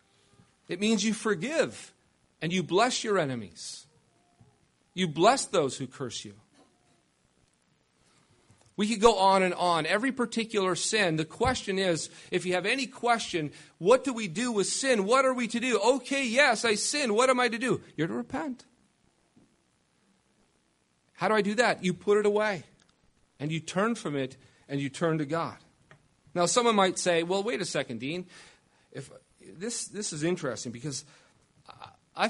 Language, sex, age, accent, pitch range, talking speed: English, male, 40-59, American, 150-225 Hz, 165 wpm